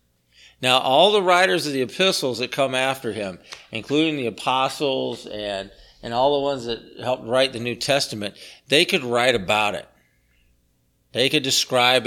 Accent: American